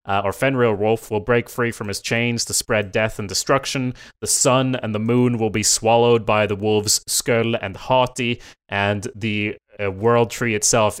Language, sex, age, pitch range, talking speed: English, male, 20-39, 110-130 Hz, 190 wpm